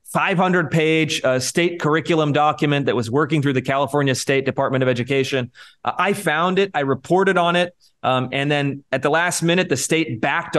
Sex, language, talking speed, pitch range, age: male, English, 195 wpm, 135-165 Hz, 30-49